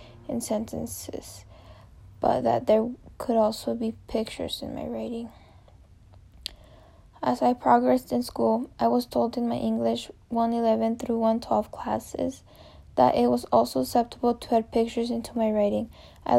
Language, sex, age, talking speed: English, female, 10-29, 145 wpm